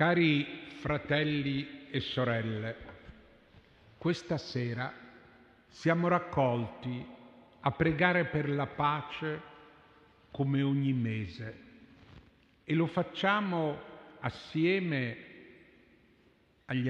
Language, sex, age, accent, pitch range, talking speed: Italian, male, 50-69, native, 125-155 Hz, 75 wpm